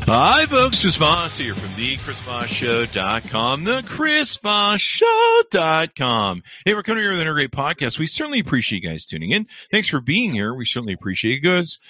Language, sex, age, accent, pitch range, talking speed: English, male, 50-69, American, 105-150 Hz, 190 wpm